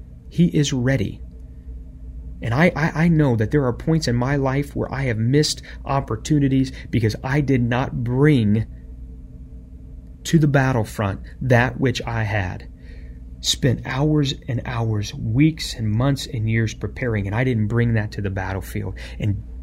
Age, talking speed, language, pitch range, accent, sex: 30-49, 155 wpm, English, 95-135 Hz, American, male